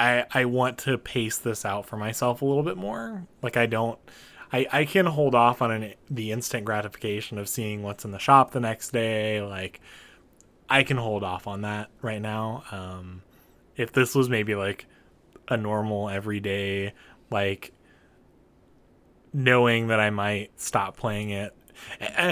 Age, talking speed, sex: 20-39, 165 wpm, male